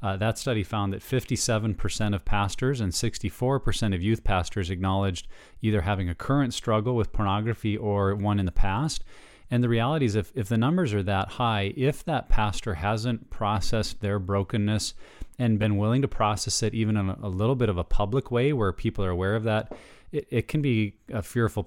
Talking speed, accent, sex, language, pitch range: 195 wpm, American, male, English, 100-115 Hz